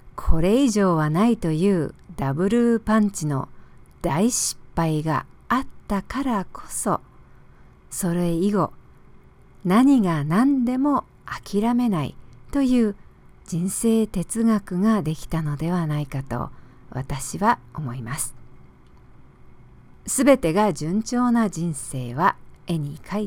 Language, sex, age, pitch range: English, female, 50-69, 145-230 Hz